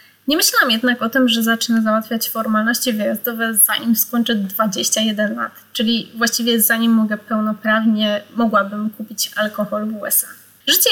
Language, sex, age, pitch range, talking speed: Polish, female, 20-39, 215-260 Hz, 135 wpm